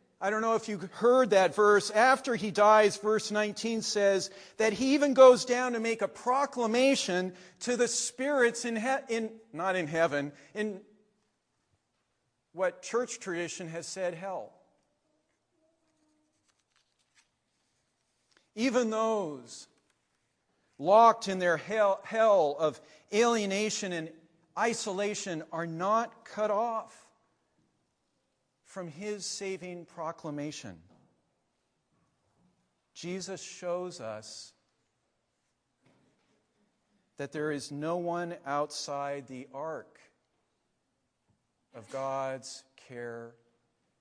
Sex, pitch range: male, 165-225 Hz